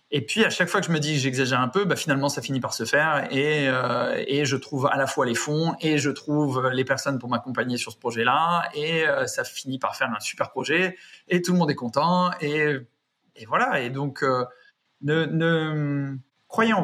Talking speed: 230 wpm